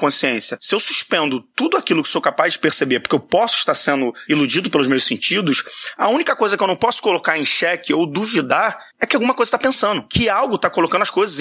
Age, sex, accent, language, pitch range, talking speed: 30-49, male, Brazilian, Portuguese, 145-200 Hz, 230 wpm